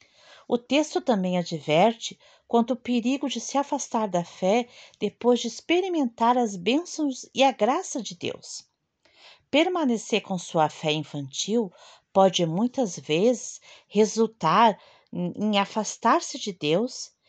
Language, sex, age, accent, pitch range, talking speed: Portuguese, female, 40-59, Brazilian, 170-245 Hz, 120 wpm